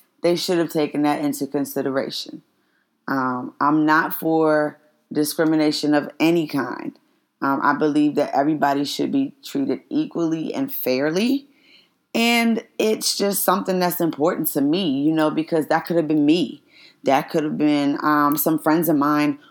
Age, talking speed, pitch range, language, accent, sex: 20-39, 155 wpm, 145-190 Hz, English, American, female